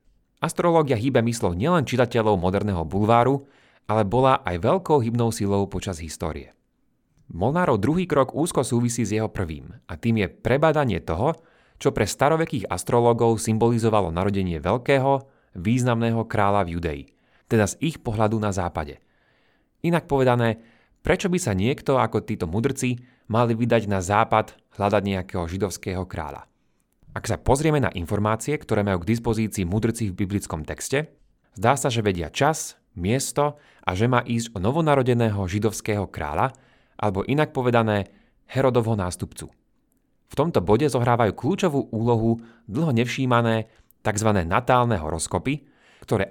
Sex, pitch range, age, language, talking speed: male, 100-130 Hz, 30-49, Slovak, 135 wpm